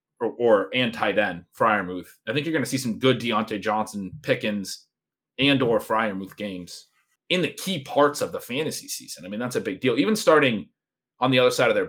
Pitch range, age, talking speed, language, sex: 105-150 Hz, 30-49, 210 wpm, English, male